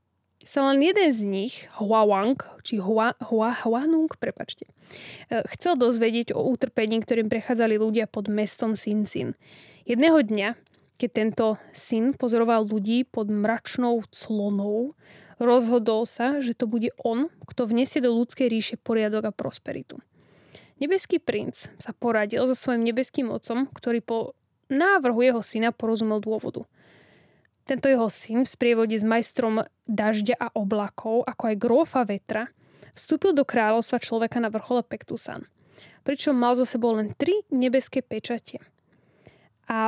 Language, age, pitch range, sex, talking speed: Slovak, 10-29, 225-260 Hz, female, 140 wpm